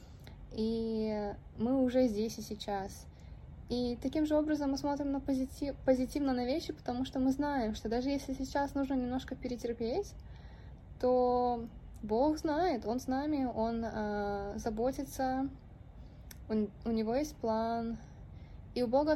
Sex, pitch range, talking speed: female, 215-265 Hz, 140 wpm